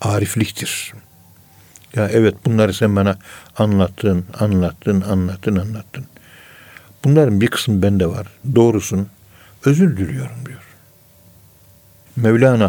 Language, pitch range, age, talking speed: Turkish, 95-115 Hz, 60-79, 95 wpm